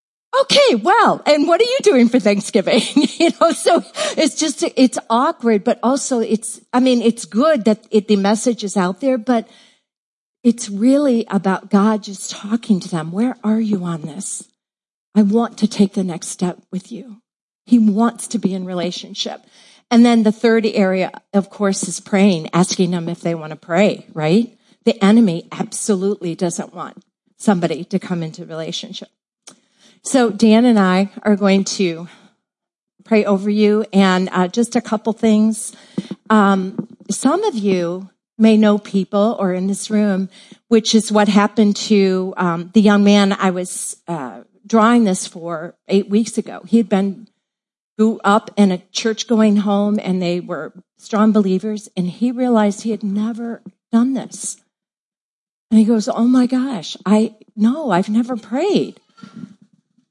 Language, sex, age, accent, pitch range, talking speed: English, female, 50-69, American, 195-230 Hz, 165 wpm